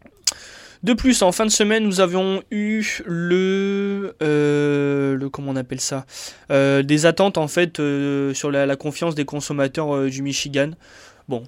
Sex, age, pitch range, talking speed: male, 20-39, 135-170 Hz, 165 wpm